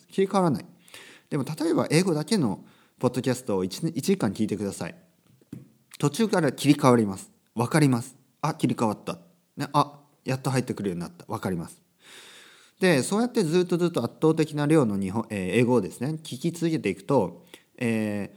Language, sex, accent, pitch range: Japanese, male, native, 105-175 Hz